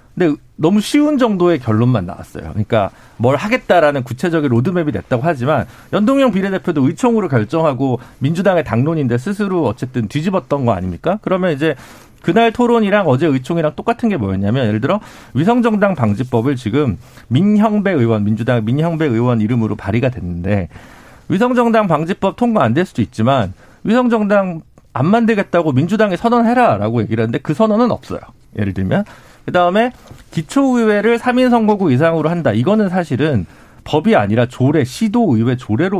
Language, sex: Korean, male